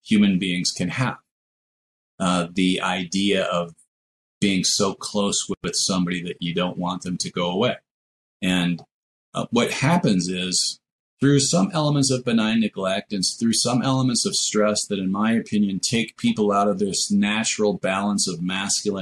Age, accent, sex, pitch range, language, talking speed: 30-49, American, male, 90-125 Hz, English, 160 wpm